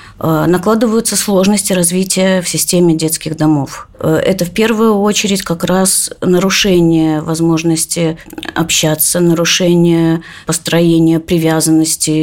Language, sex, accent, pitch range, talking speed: Russian, female, native, 160-195 Hz, 95 wpm